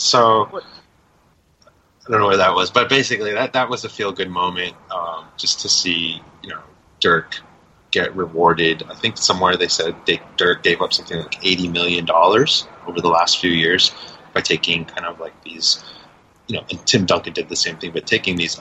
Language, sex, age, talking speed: English, male, 30-49, 195 wpm